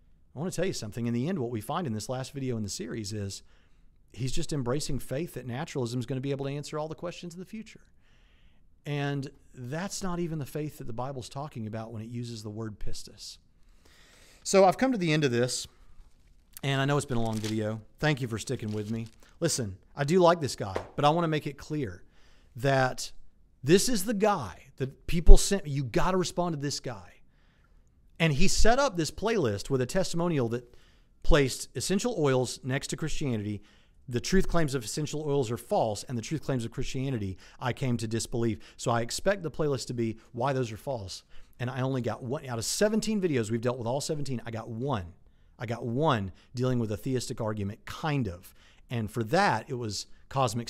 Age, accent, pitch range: 40-59, American, 110-145 Hz